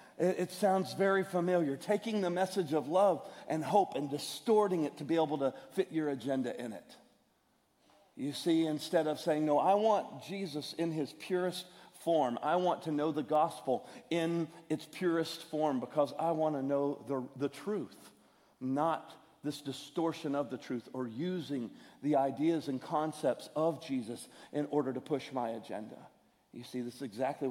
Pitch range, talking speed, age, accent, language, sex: 145-180 Hz, 170 wpm, 50-69, American, English, male